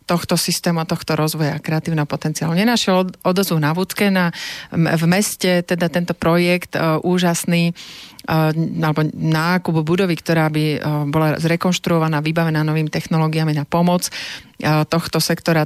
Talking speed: 125 wpm